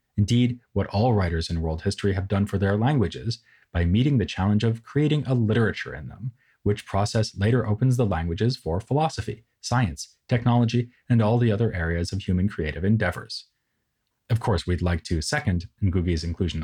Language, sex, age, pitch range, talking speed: English, male, 30-49, 90-120 Hz, 175 wpm